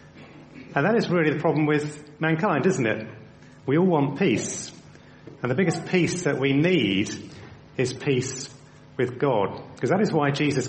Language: English